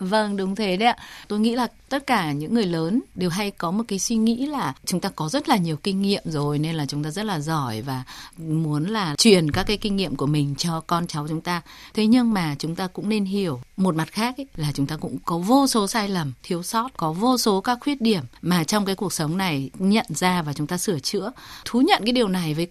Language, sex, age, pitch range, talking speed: Vietnamese, female, 20-39, 165-230 Hz, 260 wpm